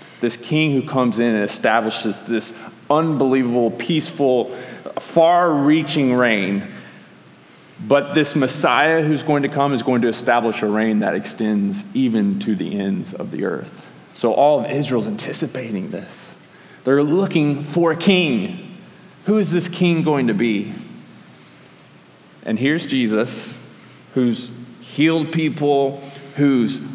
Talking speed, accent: 130 wpm, American